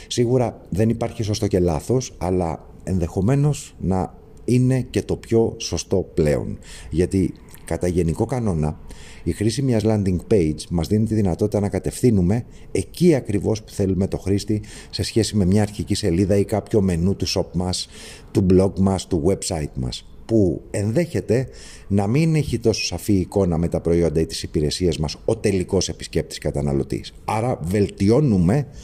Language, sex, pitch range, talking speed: Greek, male, 85-110 Hz, 155 wpm